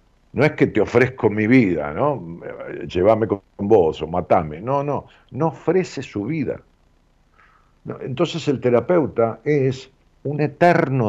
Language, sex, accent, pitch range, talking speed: Spanish, male, Argentinian, 100-150 Hz, 135 wpm